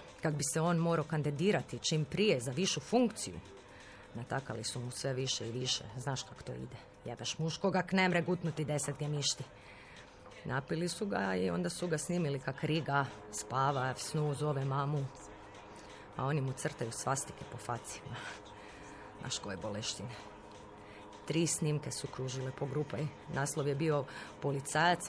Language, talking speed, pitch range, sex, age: Croatian, 150 wpm, 125-165 Hz, female, 30-49